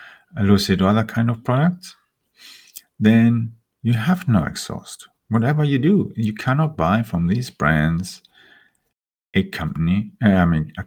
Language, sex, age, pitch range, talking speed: English, male, 50-69, 100-130 Hz, 130 wpm